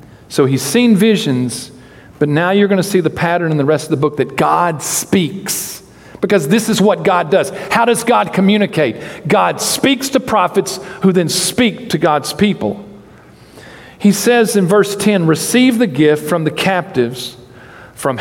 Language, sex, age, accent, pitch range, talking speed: English, male, 50-69, American, 160-220 Hz, 175 wpm